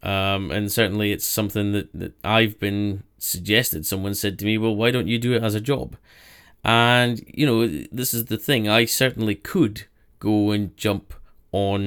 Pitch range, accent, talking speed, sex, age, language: 100-110 Hz, British, 185 wpm, male, 10-29, English